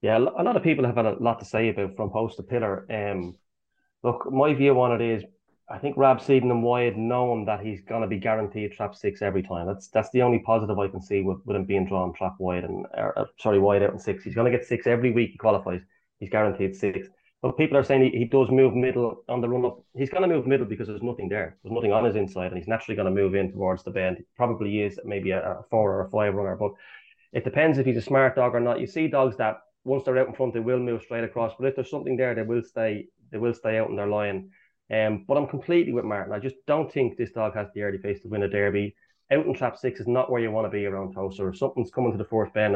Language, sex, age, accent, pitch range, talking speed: English, male, 20-39, Irish, 100-125 Hz, 280 wpm